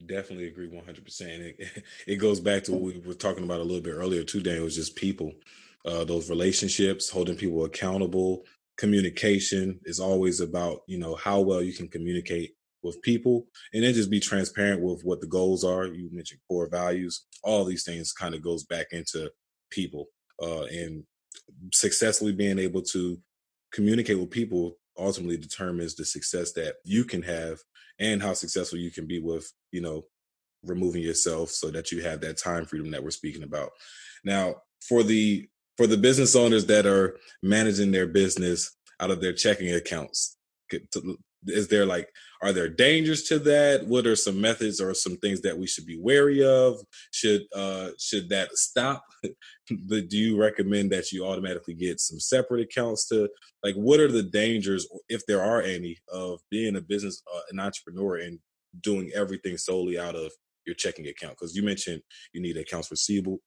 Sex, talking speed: male, 180 wpm